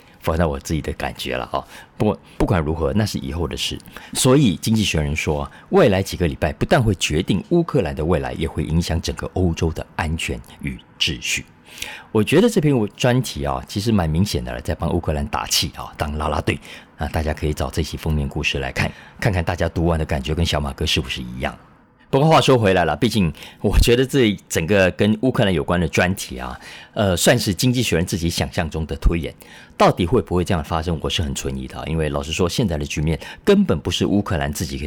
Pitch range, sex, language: 75-95 Hz, male, Chinese